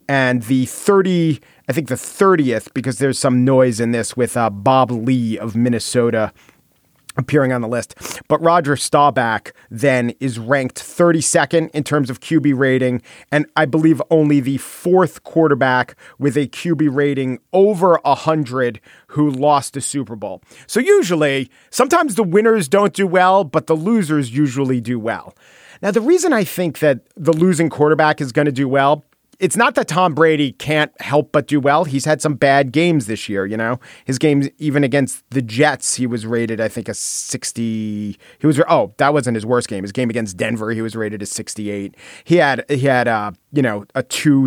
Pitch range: 120-160 Hz